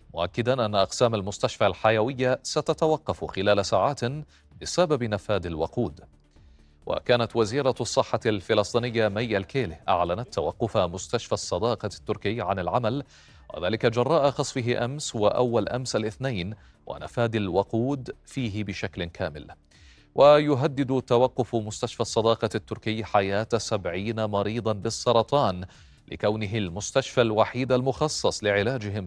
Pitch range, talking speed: 100-125 Hz, 105 wpm